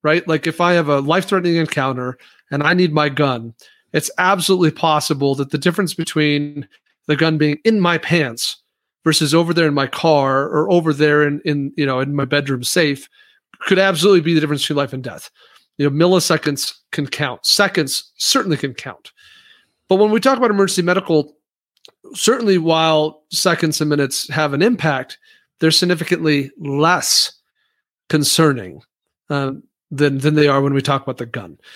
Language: English